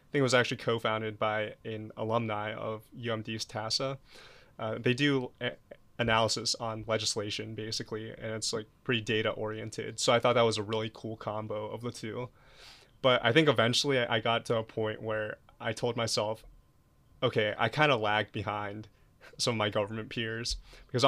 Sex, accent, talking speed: male, American, 175 wpm